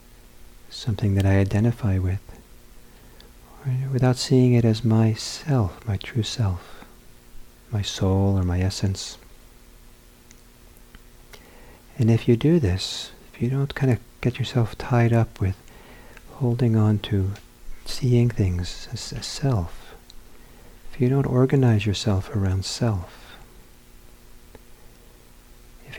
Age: 50-69